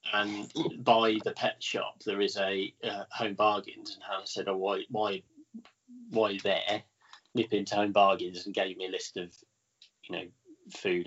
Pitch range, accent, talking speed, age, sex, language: 105-135 Hz, British, 175 wpm, 20-39, male, English